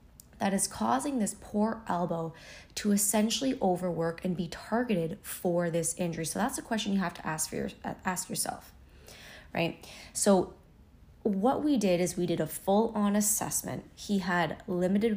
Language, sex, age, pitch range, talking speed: English, female, 20-39, 160-195 Hz, 165 wpm